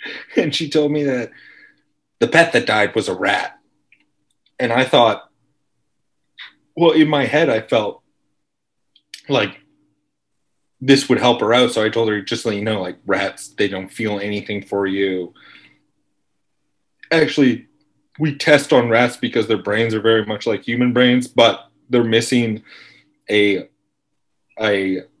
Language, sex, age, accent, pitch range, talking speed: English, male, 30-49, American, 100-125 Hz, 150 wpm